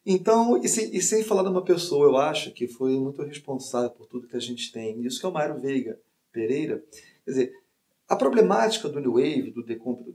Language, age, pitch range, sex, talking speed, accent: Portuguese, 40-59, 130-195 Hz, male, 220 wpm, Brazilian